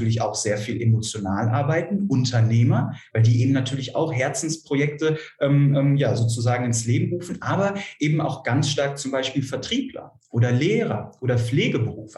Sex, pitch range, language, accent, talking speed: male, 115-140 Hz, German, German, 155 wpm